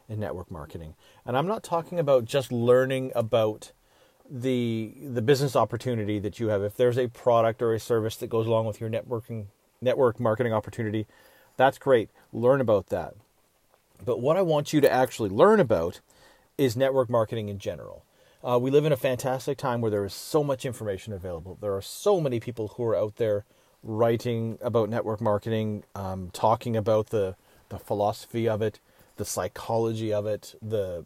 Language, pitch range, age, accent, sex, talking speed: English, 110-130 Hz, 40-59, American, male, 180 wpm